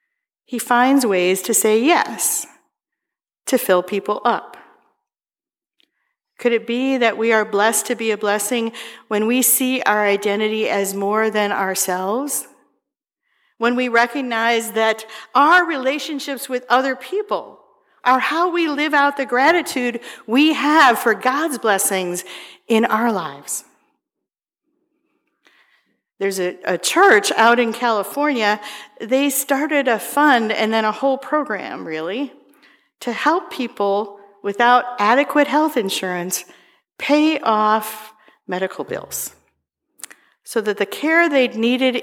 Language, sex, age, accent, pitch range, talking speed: English, female, 50-69, American, 215-285 Hz, 125 wpm